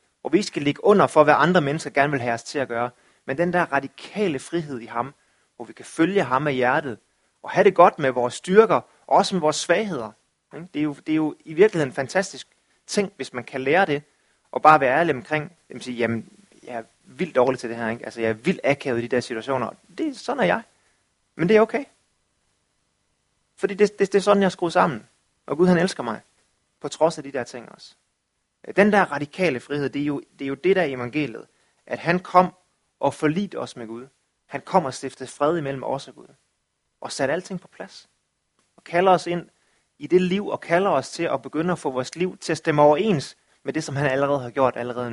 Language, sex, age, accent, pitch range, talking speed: English, male, 30-49, Danish, 130-180 Hz, 235 wpm